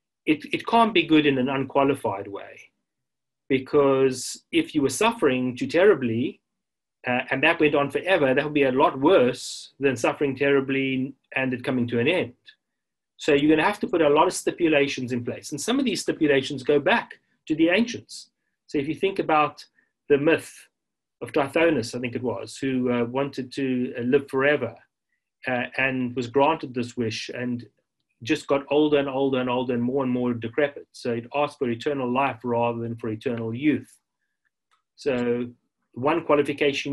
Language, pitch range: English, 125-150 Hz